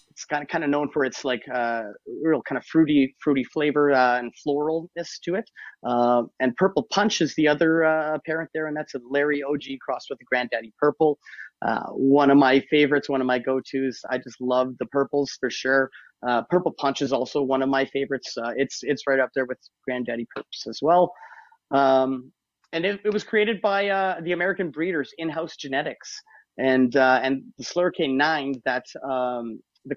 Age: 30-49